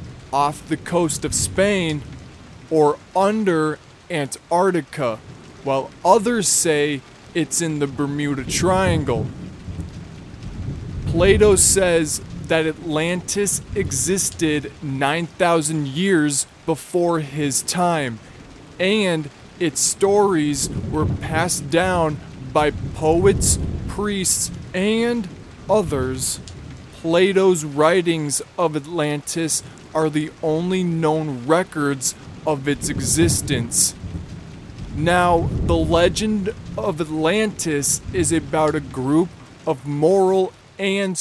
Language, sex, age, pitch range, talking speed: English, male, 20-39, 145-175 Hz, 90 wpm